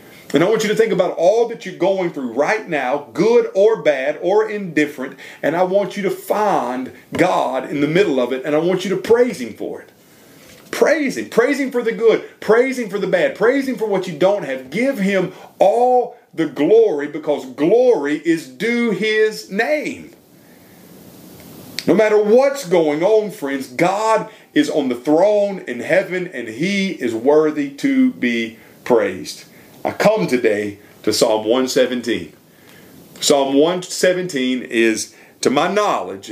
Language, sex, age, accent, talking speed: English, male, 40-59, American, 170 wpm